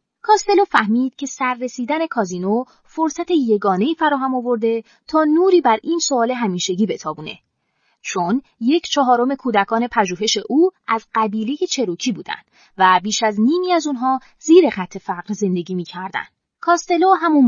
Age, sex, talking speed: 30-49, female, 140 wpm